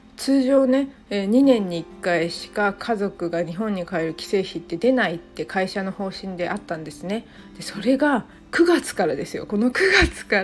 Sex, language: female, Japanese